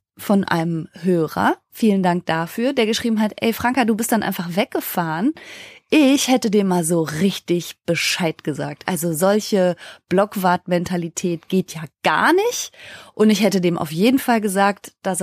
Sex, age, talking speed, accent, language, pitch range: female, 20-39, 160 wpm, German, German, 180-230 Hz